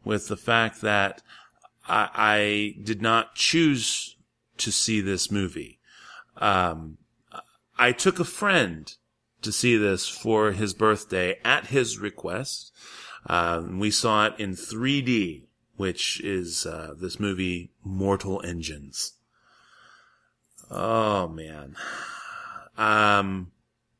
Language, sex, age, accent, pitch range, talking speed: English, male, 30-49, American, 95-120 Hz, 110 wpm